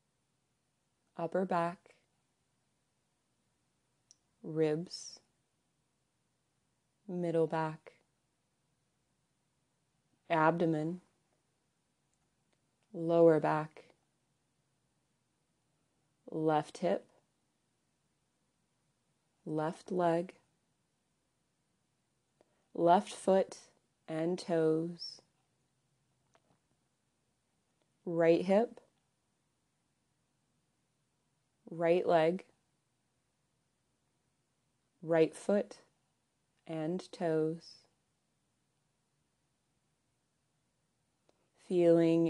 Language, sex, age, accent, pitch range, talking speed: English, female, 30-49, American, 155-170 Hz, 35 wpm